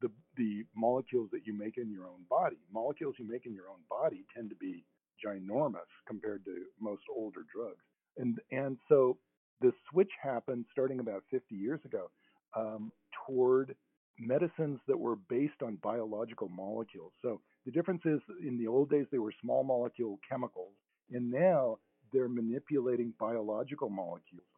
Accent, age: American, 50-69